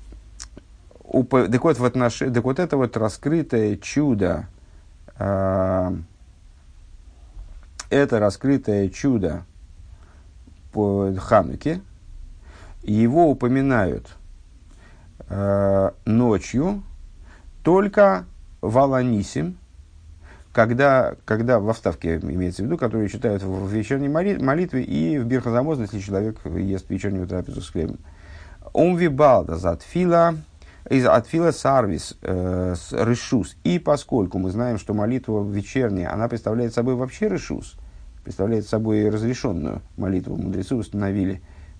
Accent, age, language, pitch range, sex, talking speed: native, 50-69, Russian, 90-125 Hz, male, 100 wpm